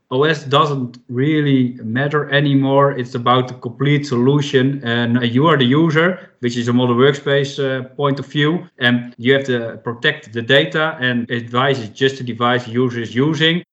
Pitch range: 120-140 Hz